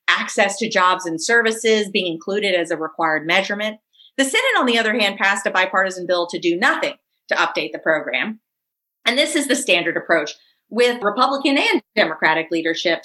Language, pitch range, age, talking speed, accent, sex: English, 180-240 Hz, 30-49, 180 wpm, American, female